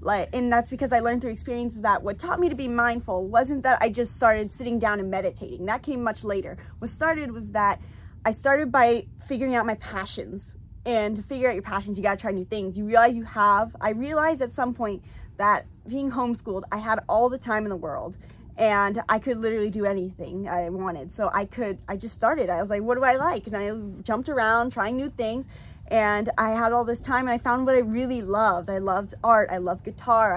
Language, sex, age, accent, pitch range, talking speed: English, female, 20-39, American, 190-240 Hz, 235 wpm